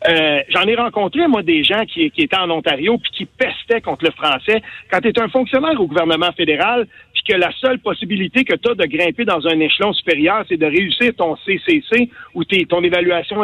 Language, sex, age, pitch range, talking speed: French, male, 50-69, 185-245 Hz, 220 wpm